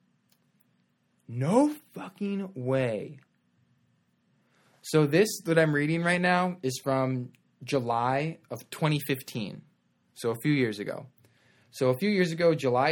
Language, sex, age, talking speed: English, male, 20-39, 120 wpm